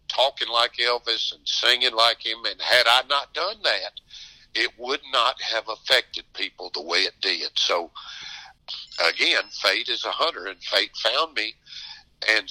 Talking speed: 165 wpm